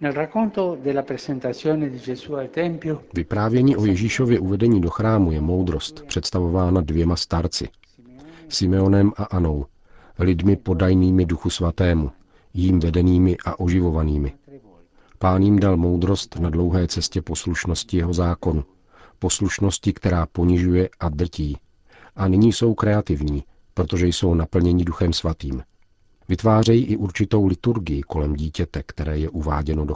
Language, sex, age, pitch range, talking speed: Czech, male, 50-69, 85-100 Hz, 110 wpm